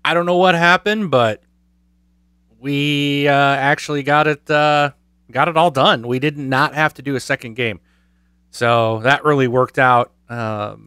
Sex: male